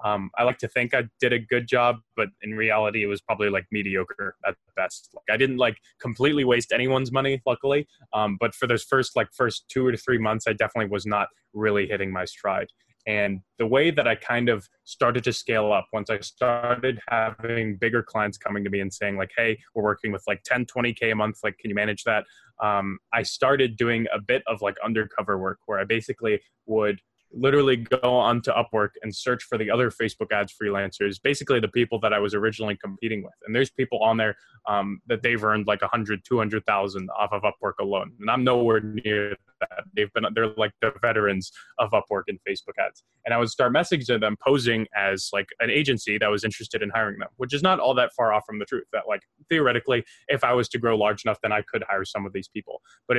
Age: 20-39